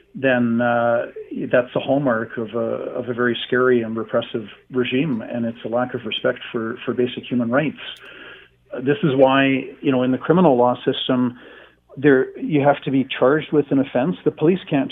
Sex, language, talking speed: male, English, 190 wpm